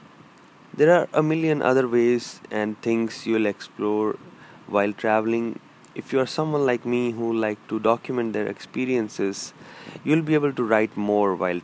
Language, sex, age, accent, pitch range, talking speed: English, male, 20-39, Indian, 100-120 Hz, 170 wpm